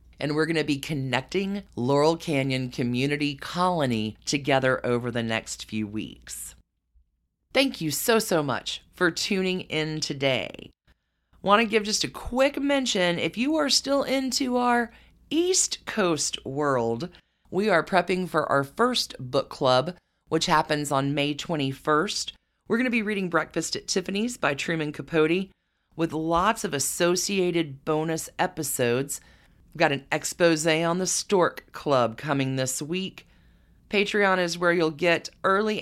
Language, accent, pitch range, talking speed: English, American, 145-190 Hz, 145 wpm